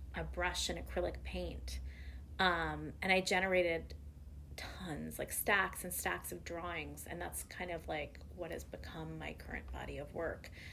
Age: 30-49